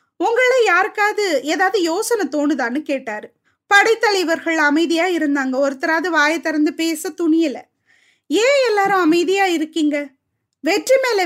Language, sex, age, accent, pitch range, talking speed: Tamil, female, 20-39, native, 305-395 Hz, 100 wpm